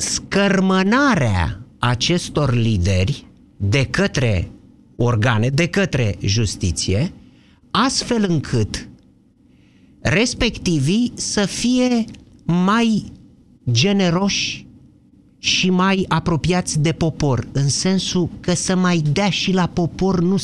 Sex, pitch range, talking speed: male, 130-180 Hz, 90 wpm